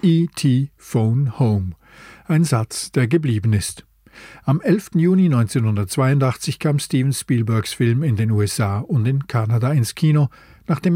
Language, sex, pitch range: German, male, 115-155 Hz